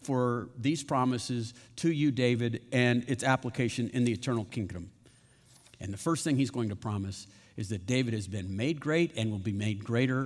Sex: male